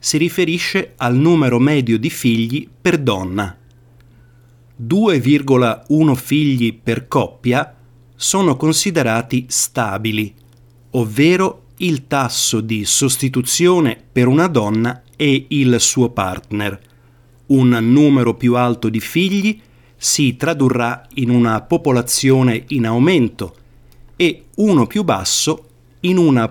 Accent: native